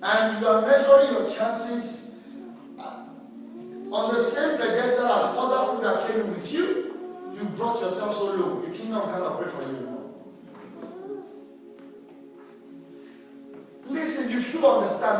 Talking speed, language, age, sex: 125 wpm, English, 50-69, male